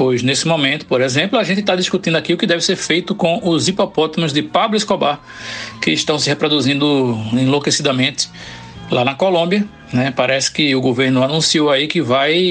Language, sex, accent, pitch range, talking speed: Portuguese, male, Brazilian, 140-195 Hz, 180 wpm